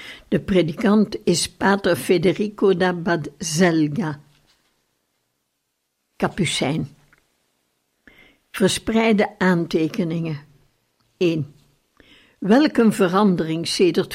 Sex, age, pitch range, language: female, 60-79, 180-215 Hz, Dutch